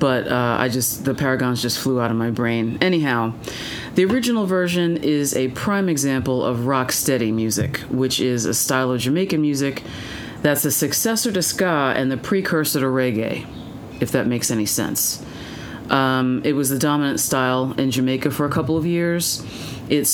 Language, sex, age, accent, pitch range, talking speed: English, female, 40-59, American, 125-155 Hz, 180 wpm